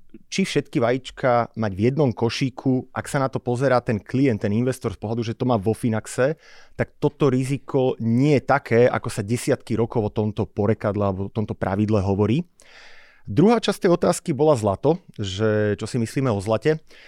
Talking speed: 185 wpm